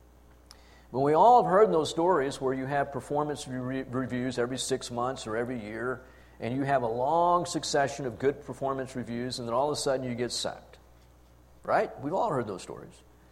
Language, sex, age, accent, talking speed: English, male, 50-69, American, 200 wpm